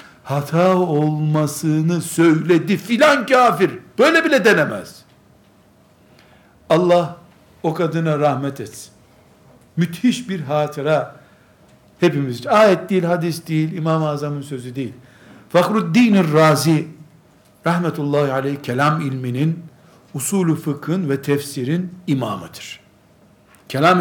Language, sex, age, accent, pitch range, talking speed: Turkish, male, 60-79, native, 120-165 Hz, 95 wpm